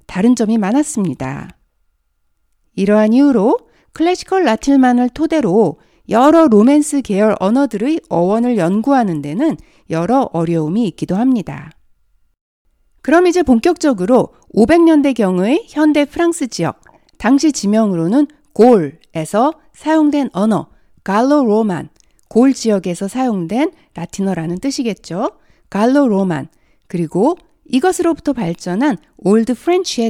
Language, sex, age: Korean, female, 60-79